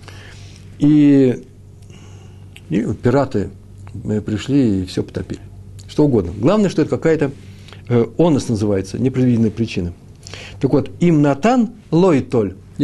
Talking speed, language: 110 wpm, Russian